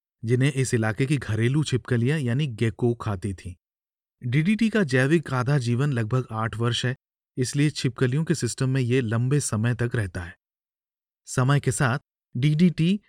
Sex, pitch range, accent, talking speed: male, 115-140 Hz, native, 155 wpm